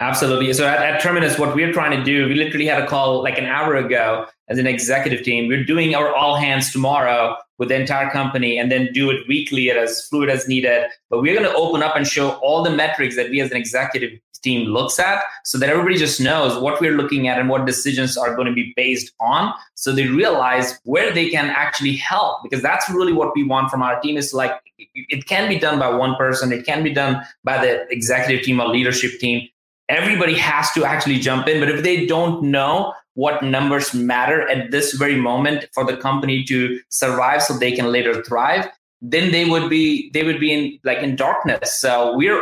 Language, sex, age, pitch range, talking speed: English, male, 20-39, 125-150 Hz, 220 wpm